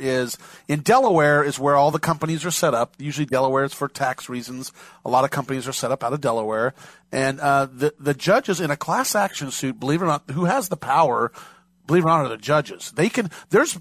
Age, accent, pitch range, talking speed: 40-59, American, 145-185 Hz, 240 wpm